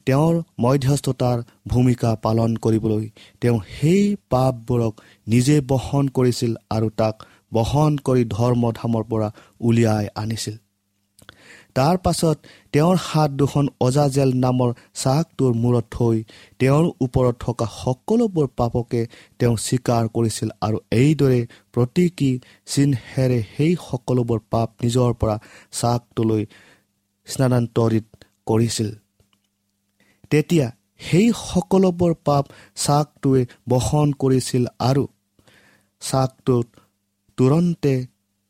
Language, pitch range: English, 110-135 Hz